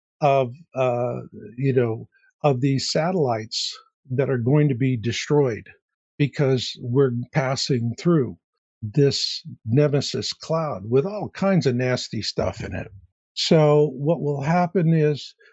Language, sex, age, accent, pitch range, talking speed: English, male, 60-79, American, 125-155 Hz, 130 wpm